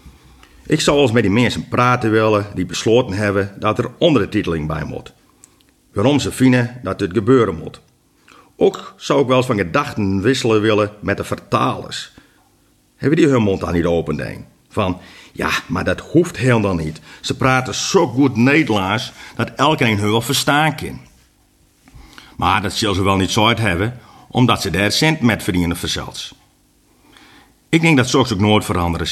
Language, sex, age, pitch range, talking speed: Dutch, male, 50-69, 95-125 Hz, 175 wpm